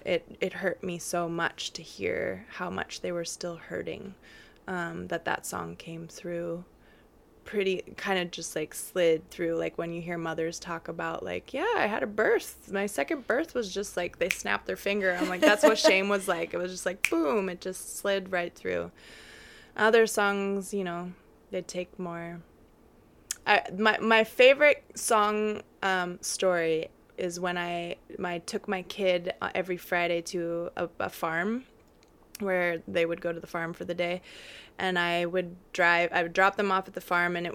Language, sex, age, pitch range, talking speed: English, female, 20-39, 170-205 Hz, 190 wpm